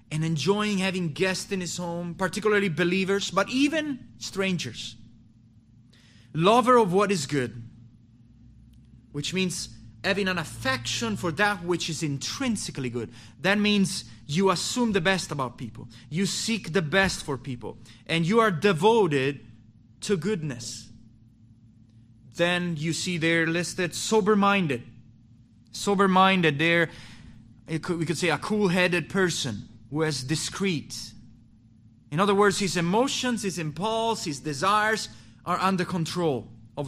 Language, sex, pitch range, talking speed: English, male, 115-190 Hz, 130 wpm